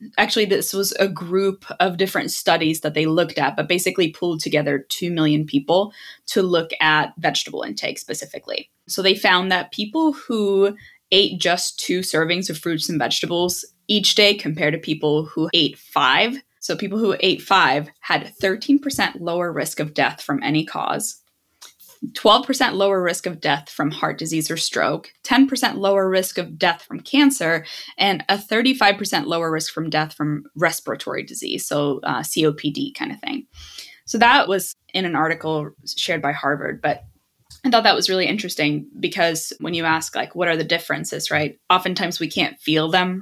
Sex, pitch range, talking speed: female, 155-195 Hz, 175 wpm